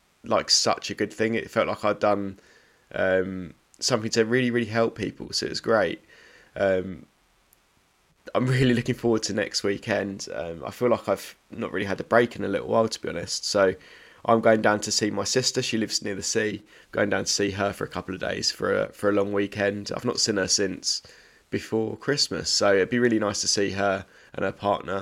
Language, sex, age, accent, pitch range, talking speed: English, male, 20-39, British, 100-115 Hz, 225 wpm